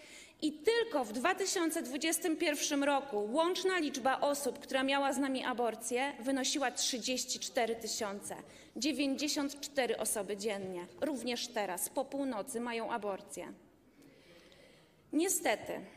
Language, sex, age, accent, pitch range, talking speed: Polish, female, 20-39, native, 225-290 Hz, 100 wpm